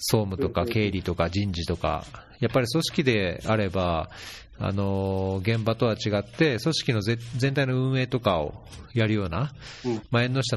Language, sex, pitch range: Japanese, male, 100-130 Hz